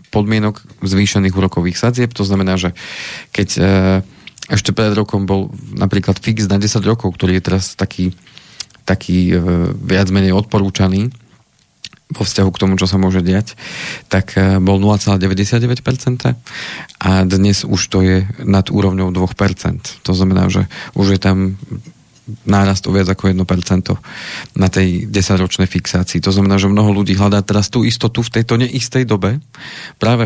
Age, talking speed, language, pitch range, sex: 40-59, 145 wpm, Slovak, 95-105 Hz, male